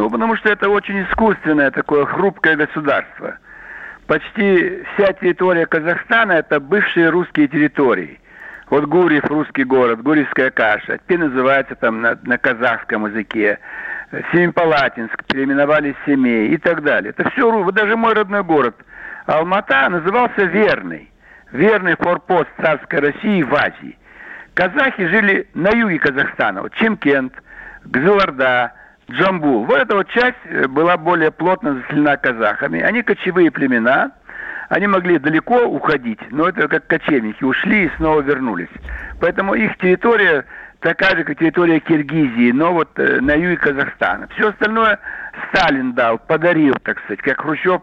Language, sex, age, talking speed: Russian, male, 60-79, 135 wpm